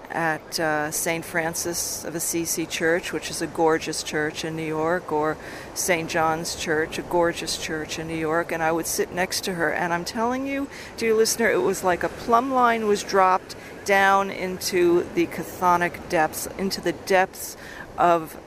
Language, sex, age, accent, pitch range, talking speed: English, female, 40-59, American, 160-195 Hz, 180 wpm